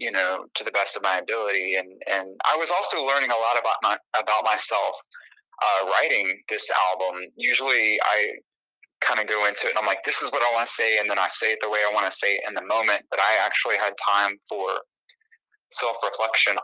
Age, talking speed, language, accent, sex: 20-39, 225 wpm, English, American, male